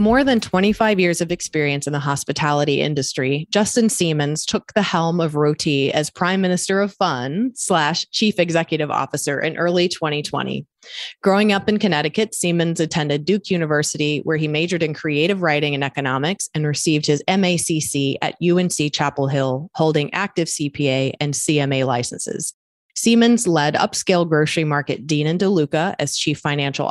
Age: 30-49